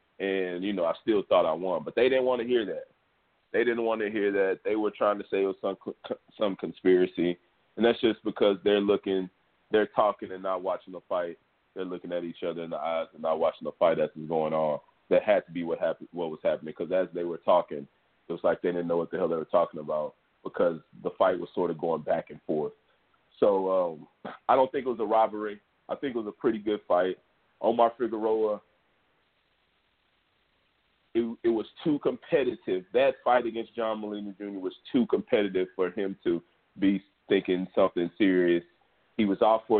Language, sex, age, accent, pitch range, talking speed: English, male, 30-49, American, 90-110 Hz, 215 wpm